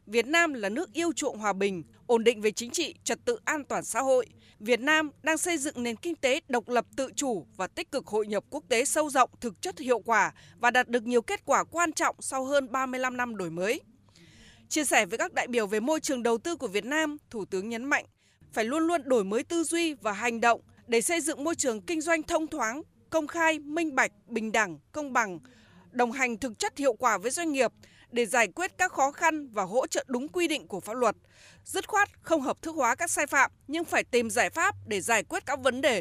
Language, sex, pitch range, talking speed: Vietnamese, female, 230-315 Hz, 245 wpm